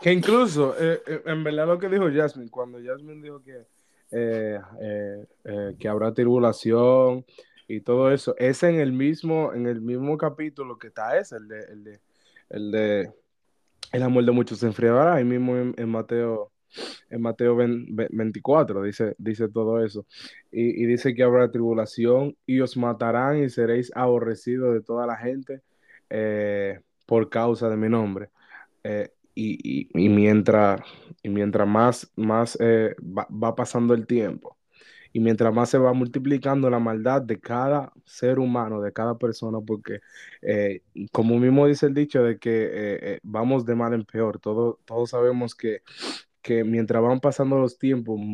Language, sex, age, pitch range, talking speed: Spanish, male, 20-39, 110-130 Hz, 170 wpm